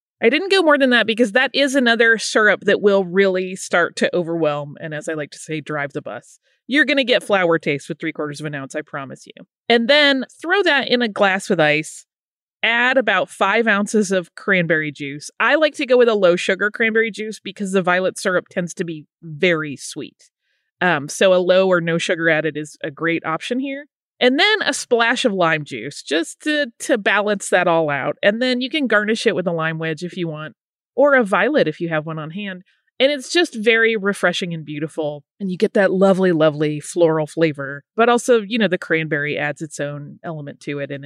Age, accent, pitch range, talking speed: 30-49, American, 160-240 Hz, 225 wpm